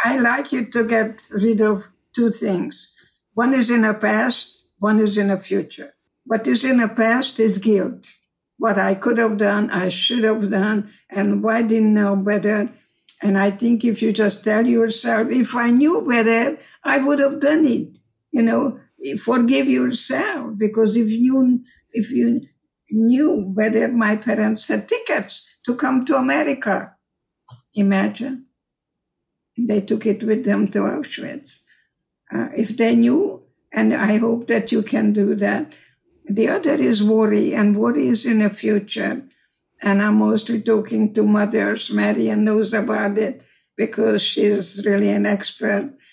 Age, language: 60-79, English